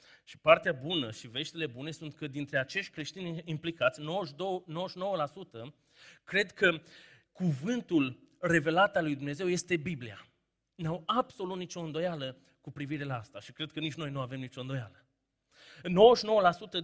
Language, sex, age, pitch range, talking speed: Romanian, male, 30-49, 140-180 Hz, 145 wpm